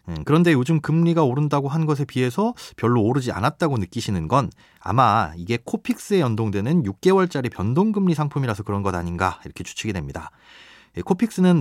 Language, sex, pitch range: Korean, male, 105-160 Hz